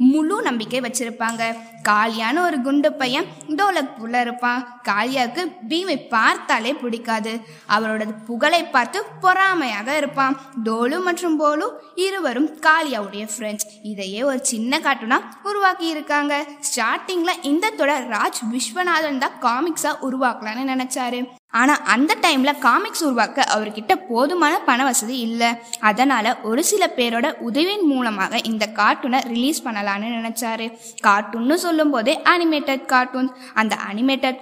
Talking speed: 110 wpm